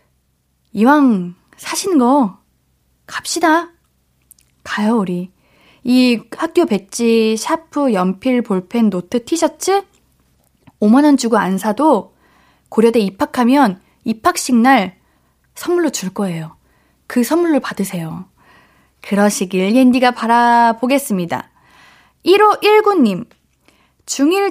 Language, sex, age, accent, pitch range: Korean, female, 20-39, native, 200-295 Hz